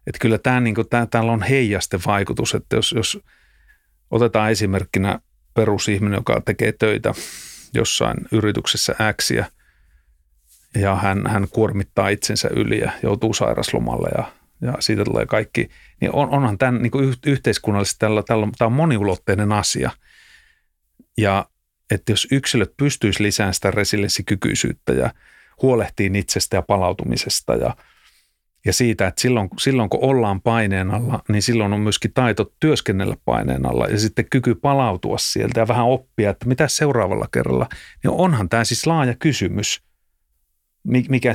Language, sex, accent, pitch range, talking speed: Finnish, male, native, 100-120 Hz, 140 wpm